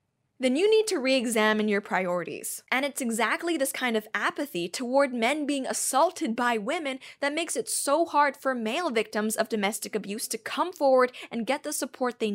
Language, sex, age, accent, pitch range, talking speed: English, female, 10-29, American, 205-260 Hz, 190 wpm